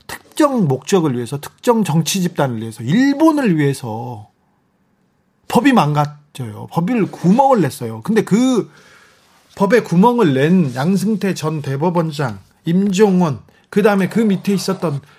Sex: male